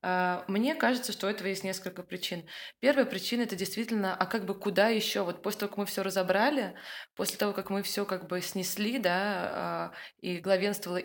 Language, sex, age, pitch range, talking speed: Russian, female, 20-39, 180-210 Hz, 195 wpm